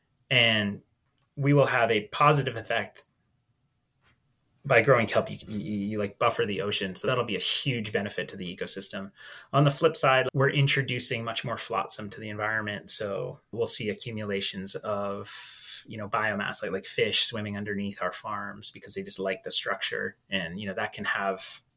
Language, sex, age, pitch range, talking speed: English, male, 30-49, 100-130 Hz, 175 wpm